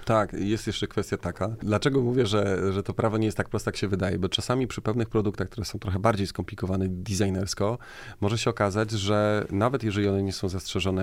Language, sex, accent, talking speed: Polish, male, native, 210 wpm